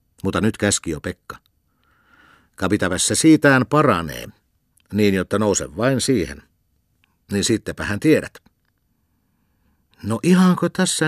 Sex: male